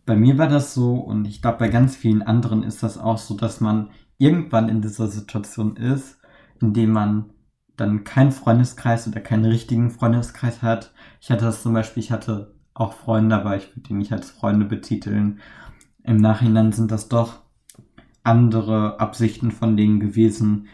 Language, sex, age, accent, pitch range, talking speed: German, male, 20-39, German, 110-120 Hz, 175 wpm